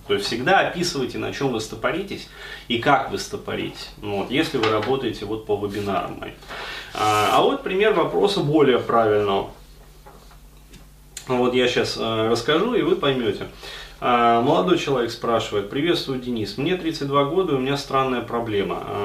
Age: 30-49